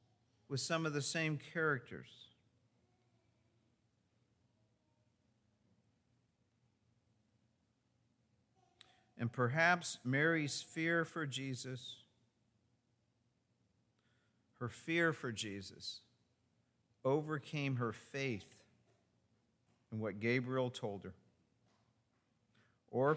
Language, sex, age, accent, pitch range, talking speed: English, male, 50-69, American, 115-140 Hz, 65 wpm